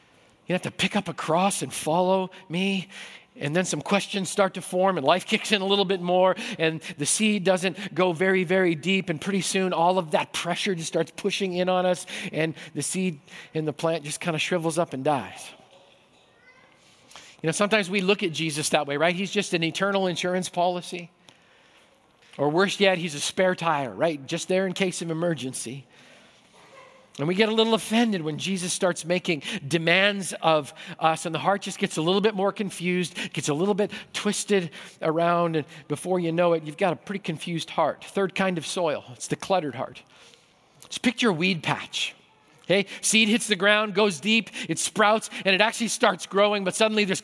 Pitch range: 165-200 Hz